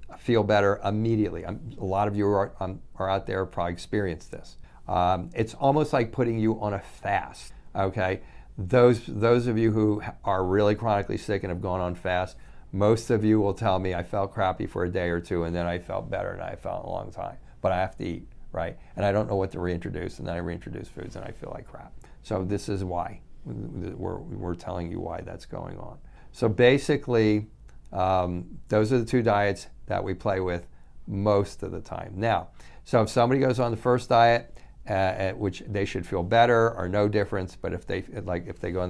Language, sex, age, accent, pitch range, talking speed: English, male, 50-69, American, 90-110 Hz, 215 wpm